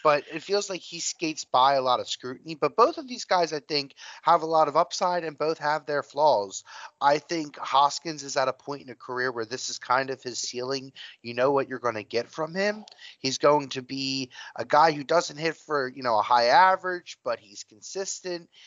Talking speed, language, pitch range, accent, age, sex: 230 wpm, English, 120-155 Hz, American, 30-49, male